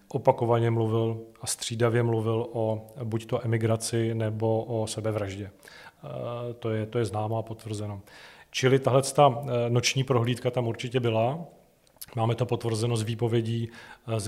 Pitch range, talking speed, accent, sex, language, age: 110-120 Hz, 135 wpm, native, male, Czech, 40-59